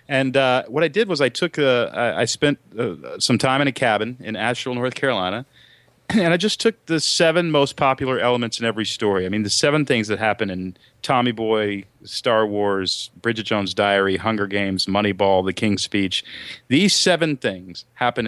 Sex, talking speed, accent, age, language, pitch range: male, 190 wpm, American, 40-59, English, 100-135 Hz